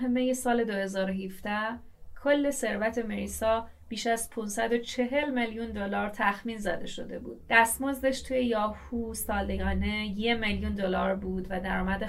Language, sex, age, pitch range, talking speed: Persian, female, 30-49, 190-235 Hz, 125 wpm